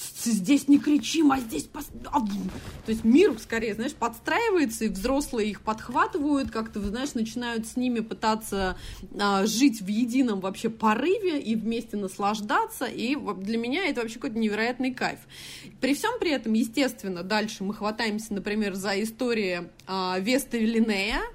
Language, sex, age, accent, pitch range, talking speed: Russian, female, 20-39, native, 205-255 Hz, 140 wpm